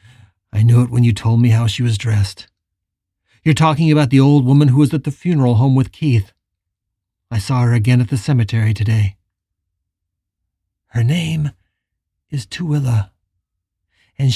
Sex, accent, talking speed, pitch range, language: male, American, 160 wpm, 95-160 Hz, English